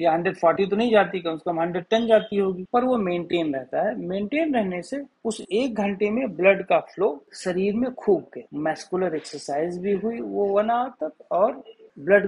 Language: Hindi